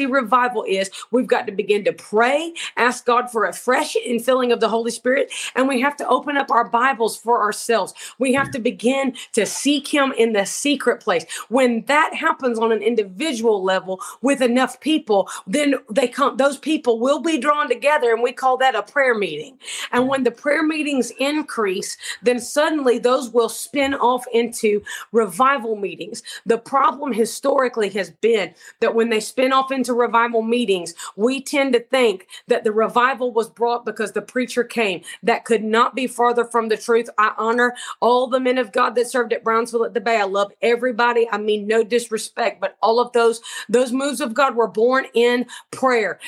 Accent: American